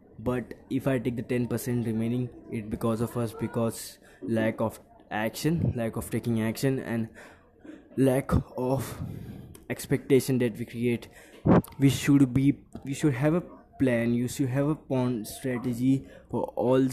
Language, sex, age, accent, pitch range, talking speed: English, male, 20-39, Indian, 115-135 Hz, 145 wpm